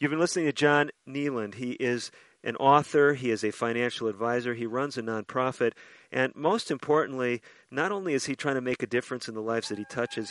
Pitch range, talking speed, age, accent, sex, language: 120-155 Hz, 215 wpm, 50-69, American, male, English